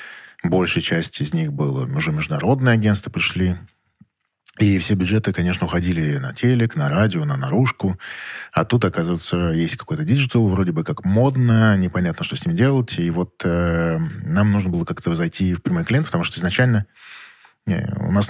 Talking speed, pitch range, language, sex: 165 wpm, 90-130 Hz, Russian, male